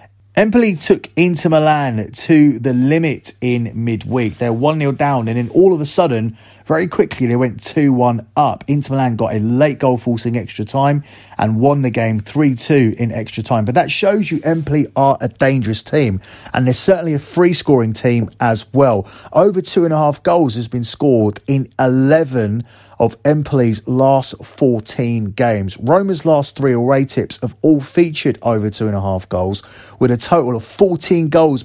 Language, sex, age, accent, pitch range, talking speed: English, male, 30-49, British, 110-140 Hz, 180 wpm